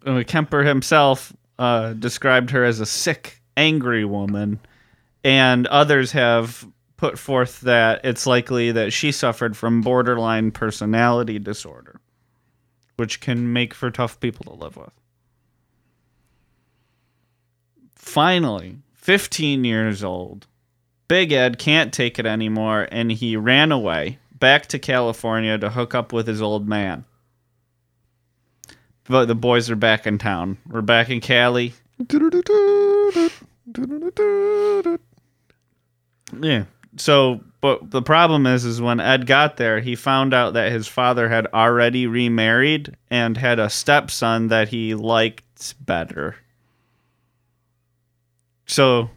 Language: English